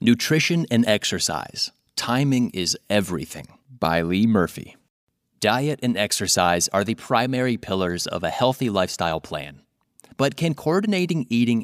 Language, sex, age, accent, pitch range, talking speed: English, male, 30-49, American, 100-130 Hz, 130 wpm